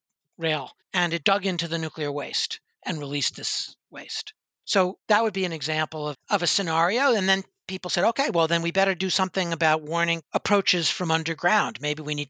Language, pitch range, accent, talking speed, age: English, 150-190 Hz, American, 200 wpm, 60-79